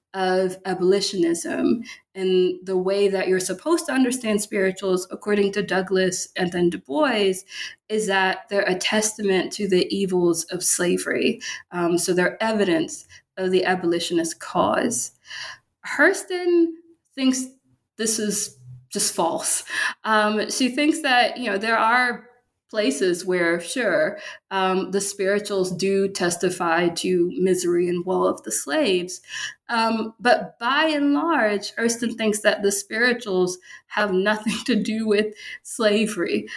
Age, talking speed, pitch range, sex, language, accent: 20-39, 135 wpm, 185-220 Hz, female, English, American